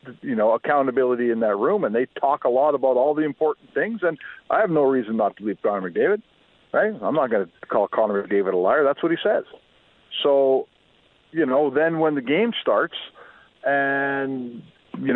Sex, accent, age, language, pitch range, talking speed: male, American, 50-69, English, 135-215 Hz, 200 wpm